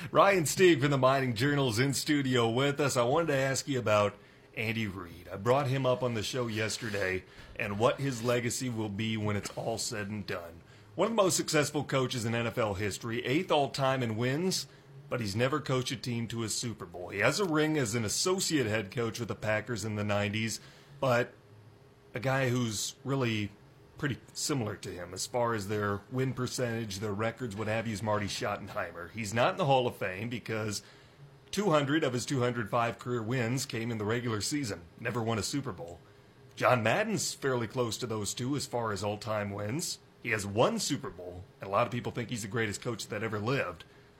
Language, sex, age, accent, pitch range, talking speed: English, male, 30-49, American, 105-135 Hz, 210 wpm